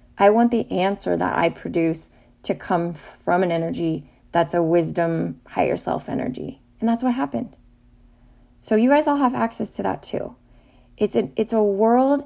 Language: English